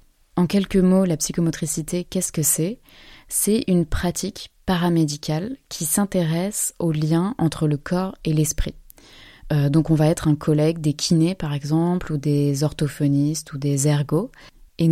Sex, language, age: female, French, 20-39